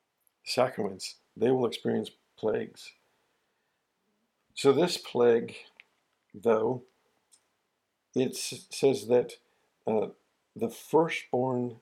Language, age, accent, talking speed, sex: English, 50-69, American, 75 wpm, male